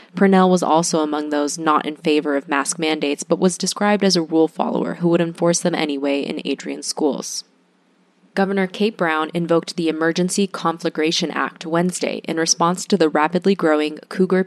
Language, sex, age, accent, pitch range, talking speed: English, female, 20-39, American, 155-185 Hz, 175 wpm